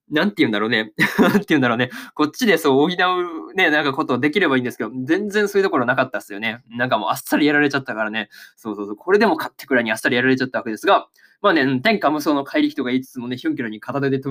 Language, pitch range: Japanese, 120-180 Hz